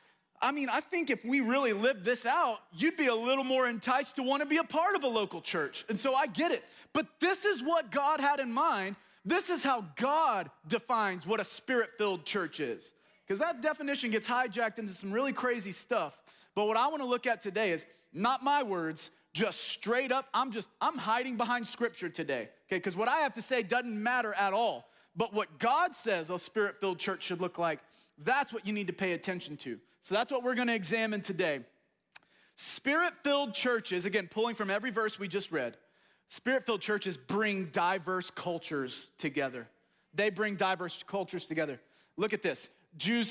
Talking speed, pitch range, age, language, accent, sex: 195 wpm, 195-275 Hz, 30-49, English, American, male